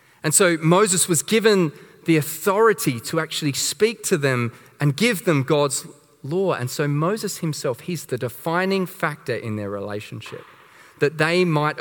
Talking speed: 160 wpm